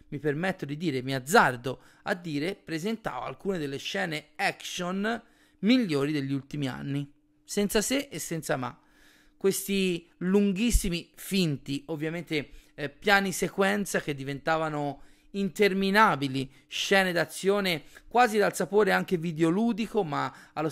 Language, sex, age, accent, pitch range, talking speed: Italian, male, 30-49, native, 155-205 Hz, 120 wpm